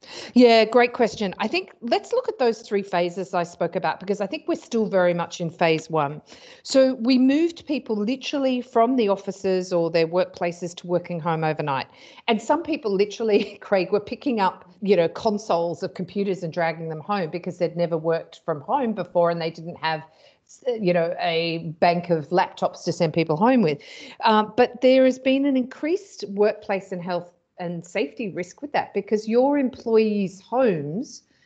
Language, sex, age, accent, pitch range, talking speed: English, female, 40-59, Australian, 170-220 Hz, 185 wpm